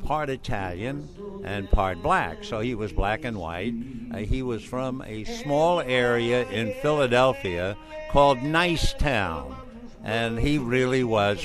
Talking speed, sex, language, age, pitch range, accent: 140 wpm, male, English, 60-79, 105-130 Hz, American